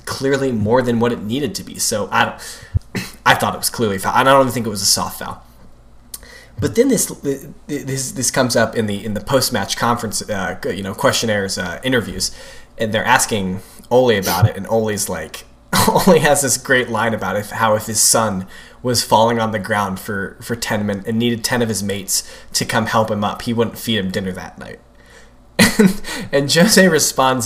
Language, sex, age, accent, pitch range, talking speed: English, male, 20-39, American, 110-130 Hz, 210 wpm